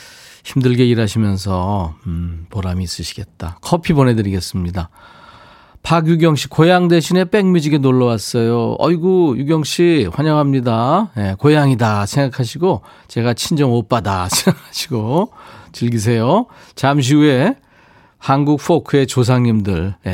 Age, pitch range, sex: 40-59, 105-165 Hz, male